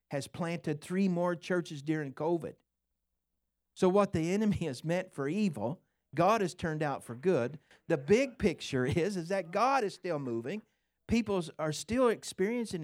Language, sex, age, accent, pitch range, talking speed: English, male, 50-69, American, 105-165 Hz, 165 wpm